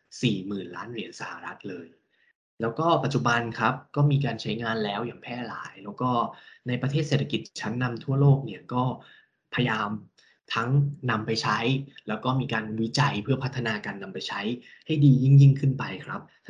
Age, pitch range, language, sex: 10-29, 110-140 Hz, Thai, male